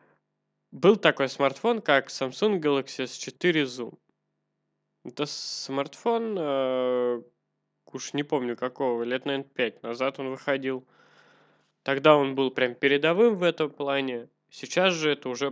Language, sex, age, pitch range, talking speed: Russian, male, 20-39, 120-140 Hz, 130 wpm